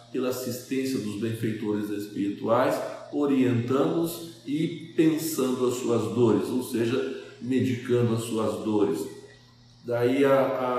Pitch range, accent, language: 110-145 Hz, Brazilian, Portuguese